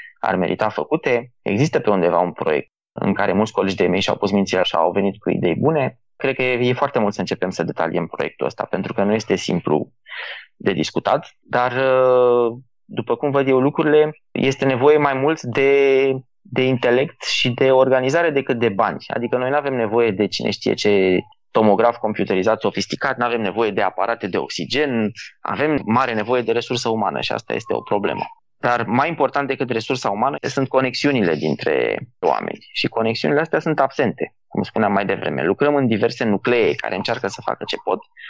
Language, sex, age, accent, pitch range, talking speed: Romanian, male, 20-39, native, 120-140 Hz, 185 wpm